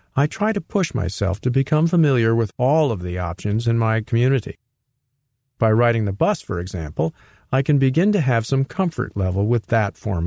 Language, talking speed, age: English, 195 wpm, 50-69